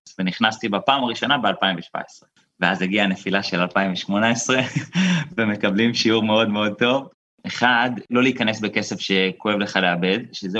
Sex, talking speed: male, 125 wpm